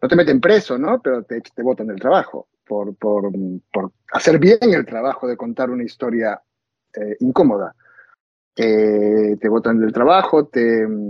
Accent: Mexican